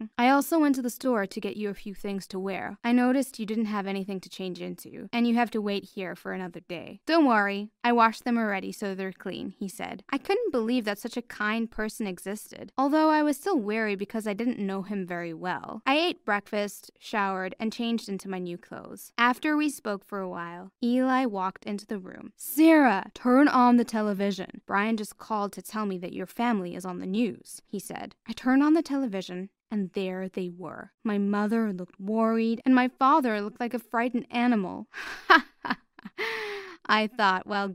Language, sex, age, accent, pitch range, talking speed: English, female, 10-29, American, 200-255 Hz, 205 wpm